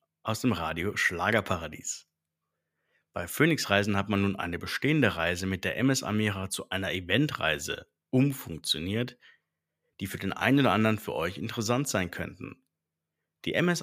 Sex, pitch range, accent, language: male, 95-125 Hz, German, German